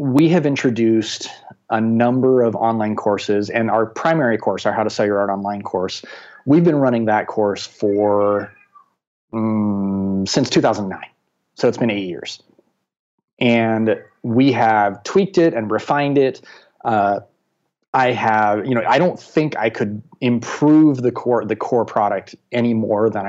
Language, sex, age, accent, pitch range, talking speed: English, male, 30-49, American, 100-120 Hz, 155 wpm